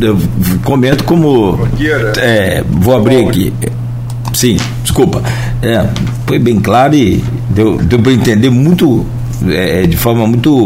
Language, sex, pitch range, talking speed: Portuguese, male, 110-135 Hz, 130 wpm